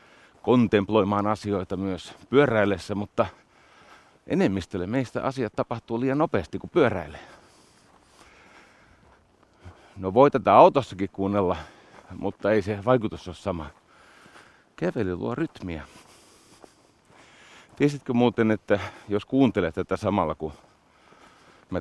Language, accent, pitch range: Finnish, native, 90-115 Hz